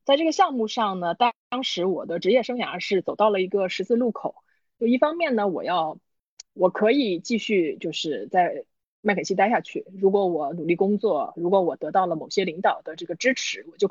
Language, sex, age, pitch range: Chinese, female, 20-39, 180-260 Hz